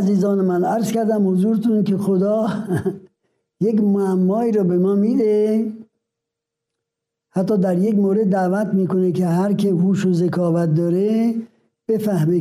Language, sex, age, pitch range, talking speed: Persian, male, 60-79, 180-220 Hz, 125 wpm